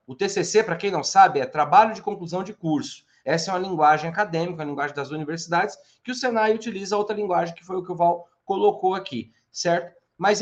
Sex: male